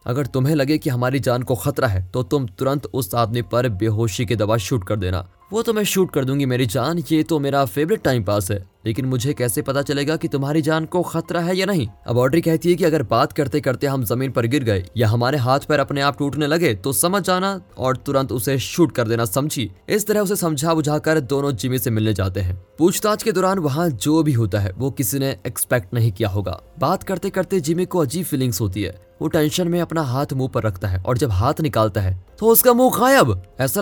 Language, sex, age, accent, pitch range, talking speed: Hindi, male, 20-39, native, 115-165 Hz, 240 wpm